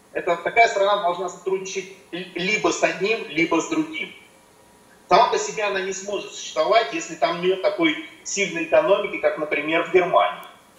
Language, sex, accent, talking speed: Russian, male, native, 150 wpm